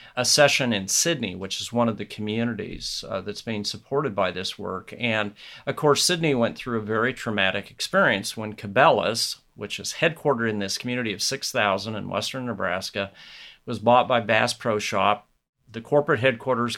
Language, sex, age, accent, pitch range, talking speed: English, male, 50-69, American, 110-145 Hz, 175 wpm